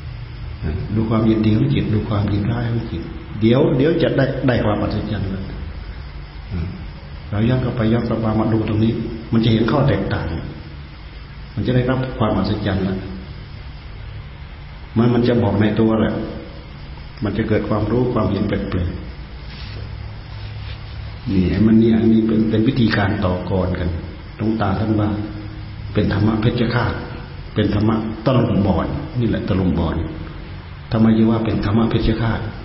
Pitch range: 90-115 Hz